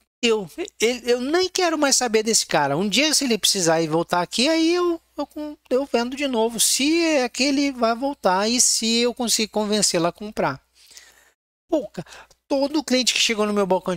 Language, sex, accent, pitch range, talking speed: Portuguese, male, Brazilian, 170-250 Hz, 190 wpm